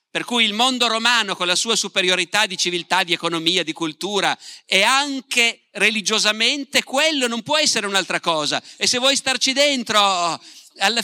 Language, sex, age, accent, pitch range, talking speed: Italian, male, 50-69, native, 175-245 Hz, 165 wpm